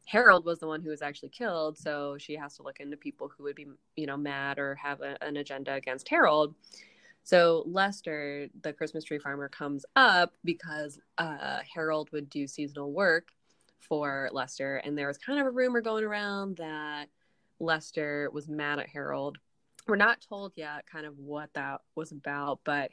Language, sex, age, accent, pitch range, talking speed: English, female, 20-39, American, 145-190 Hz, 185 wpm